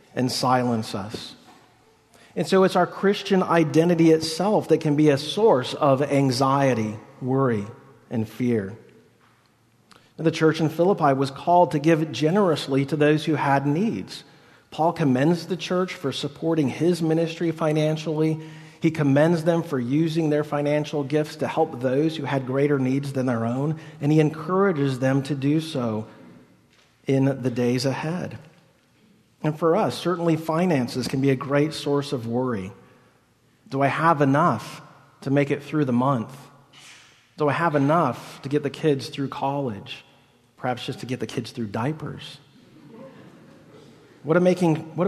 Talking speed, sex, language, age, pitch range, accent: 150 wpm, male, English, 40-59, 135-160 Hz, American